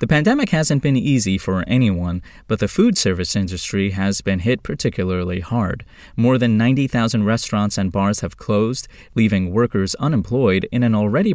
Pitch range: 95-120 Hz